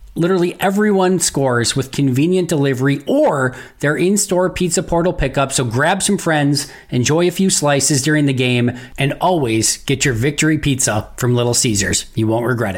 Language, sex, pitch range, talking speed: English, male, 120-150 Hz, 165 wpm